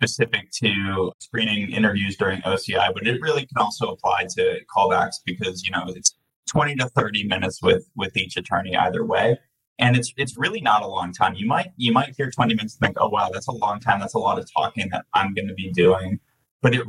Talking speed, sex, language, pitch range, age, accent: 225 wpm, male, English, 105-160 Hz, 20-39, American